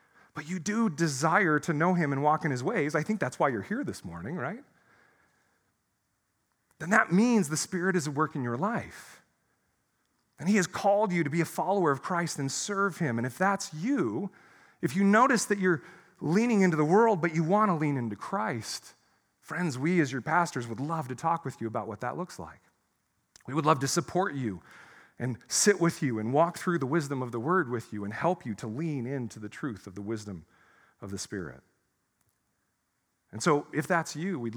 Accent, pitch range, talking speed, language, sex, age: American, 125-185 Hz, 210 wpm, English, male, 40-59